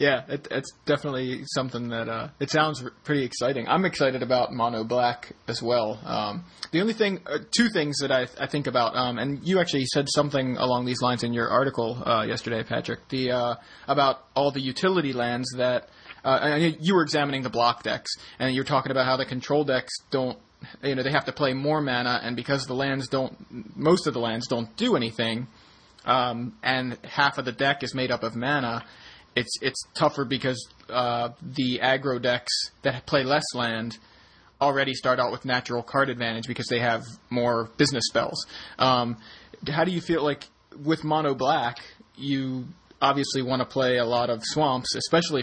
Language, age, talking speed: English, 30-49, 190 wpm